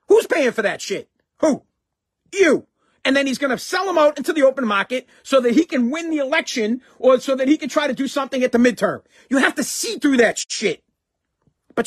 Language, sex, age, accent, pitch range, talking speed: English, male, 40-59, American, 240-325 Hz, 235 wpm